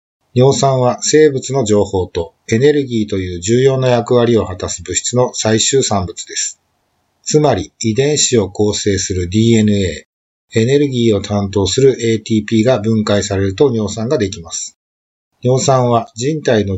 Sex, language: male, Japanese